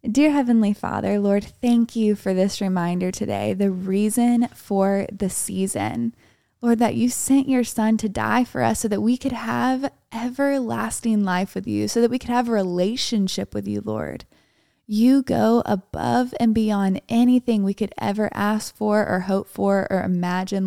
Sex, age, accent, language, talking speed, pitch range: female, 20-39, American, English, 175 wpm, 185-230 Hz